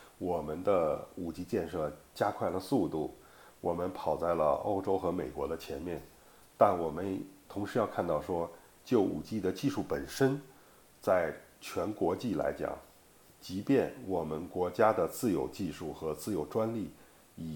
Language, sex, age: Chinese, male, 50-69